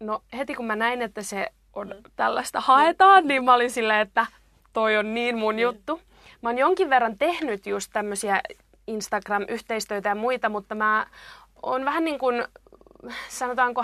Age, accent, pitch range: 20-39, native, 210-245 Hz